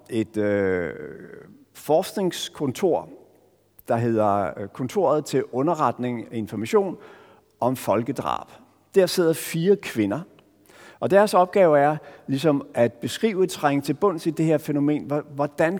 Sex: male